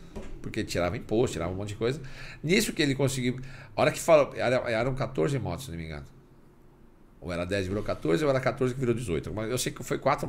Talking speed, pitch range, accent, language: 240 wpm, 100-130 Hz, Brazilian, Portuguese